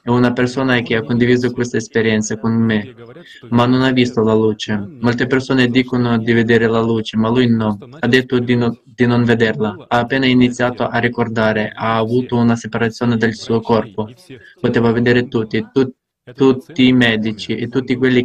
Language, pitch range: Italian, 115-125 Hz